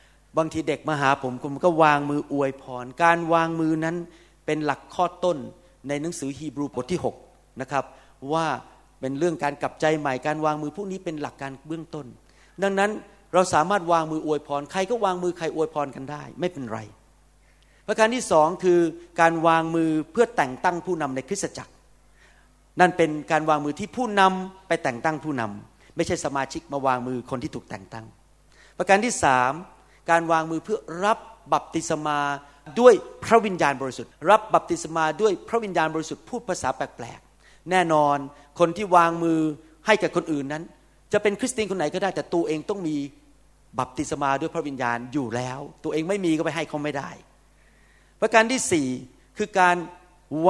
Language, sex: Thai, male